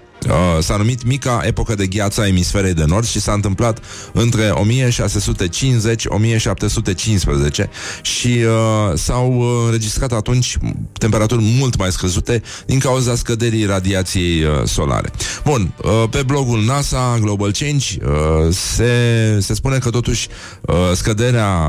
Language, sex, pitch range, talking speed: Romanian, male, 90-120 Hz, 110 wpm